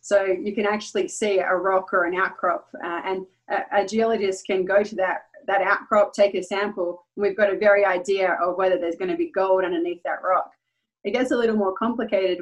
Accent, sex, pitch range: Australian, female, 185-210 Hz